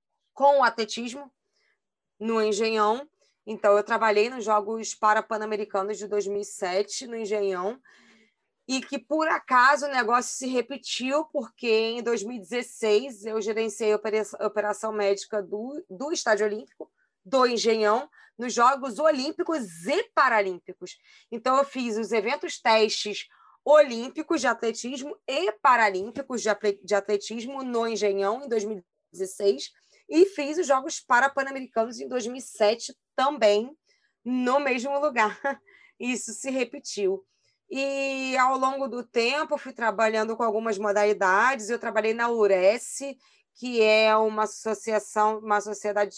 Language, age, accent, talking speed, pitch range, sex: Portuguese, 20-39, Brazilian, 120 wpm, 210-265 Hz, female